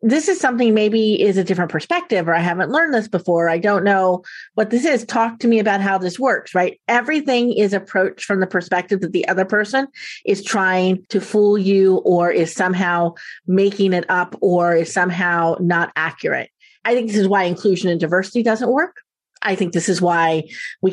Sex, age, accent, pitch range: female, 30-49, American, 175-220 Hz